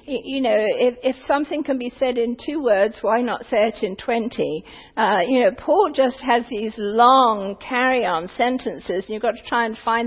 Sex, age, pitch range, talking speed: female, 50-69, 235-320 Hz, 210 wpm